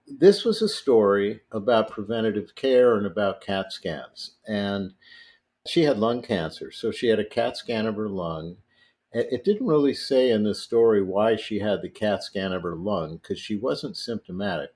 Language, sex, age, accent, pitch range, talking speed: English, male, 50-69, American, 100-135 Hz, 185 wpm